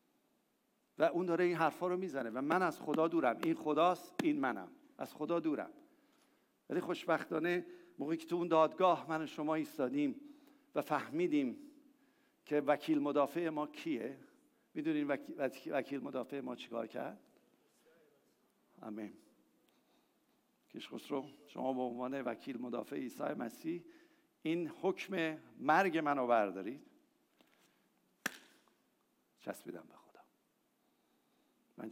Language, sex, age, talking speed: English, male, 60-79, 115 wpm